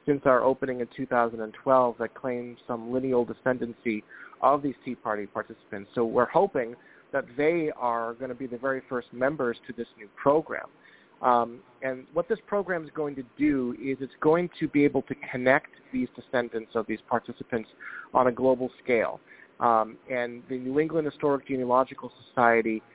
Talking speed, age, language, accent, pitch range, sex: 175 wpm, 40-59, English, American, 125-150 Hz, male